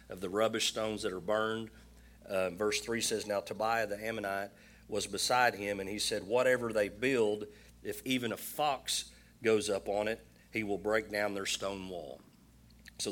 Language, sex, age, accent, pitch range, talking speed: English, male, 40-59, American, 95-110 Hz, 185 wpm